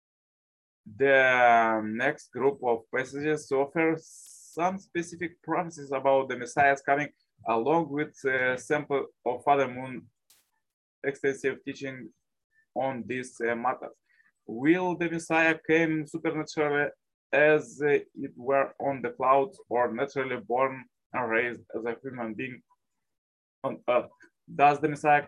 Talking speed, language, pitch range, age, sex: 125 wpm, English, 130-160 Hz, 20-39, male